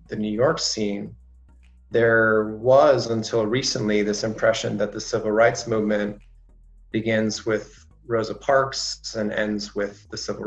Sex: male